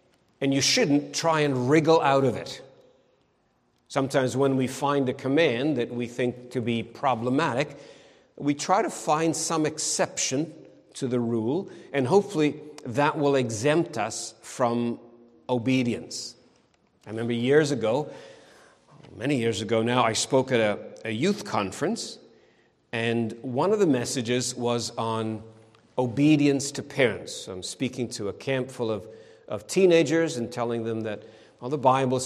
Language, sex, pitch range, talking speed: English, male, 120-150 Hz, 145 wpm